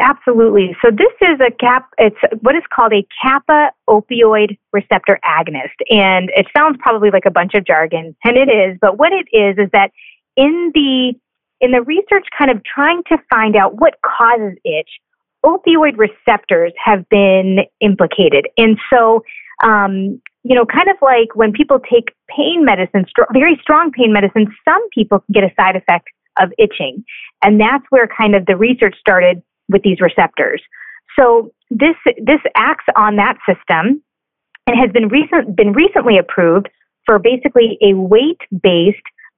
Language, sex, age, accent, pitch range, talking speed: English, female, 30-49, American, 195-265 Hz, 165 wpm